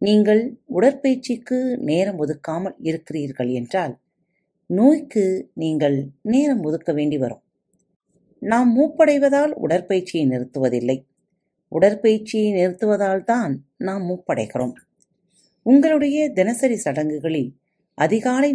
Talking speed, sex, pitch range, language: 80 wpm, female, 145-225 Hz, Tamil